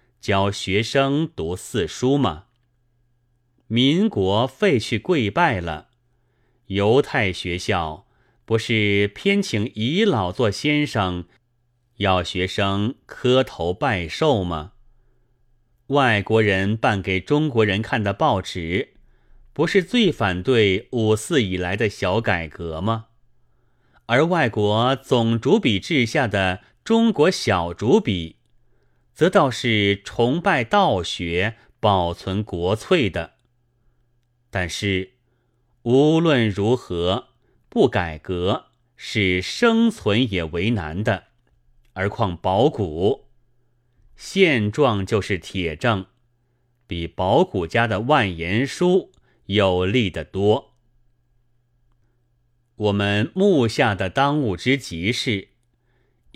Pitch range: 100-125 Hz